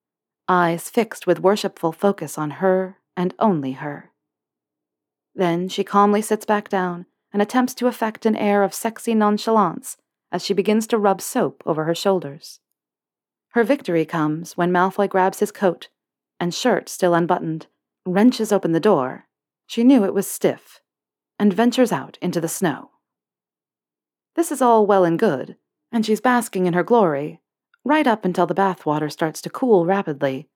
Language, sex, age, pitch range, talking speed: English, female, 40-59, 170-225 Hz, 160 wpm